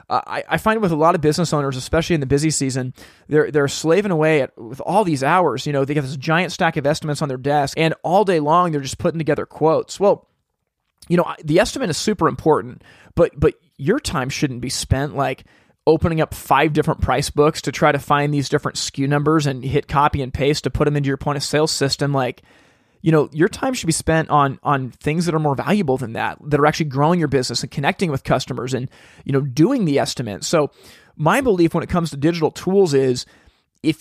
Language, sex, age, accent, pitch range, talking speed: English, male, 30-49, American, 140-160 Hz, 230 wpm